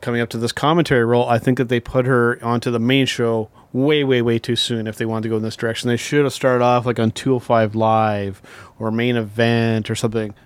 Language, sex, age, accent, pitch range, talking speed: English, male, 30-49, American, 115-135 Hz, 245 wpm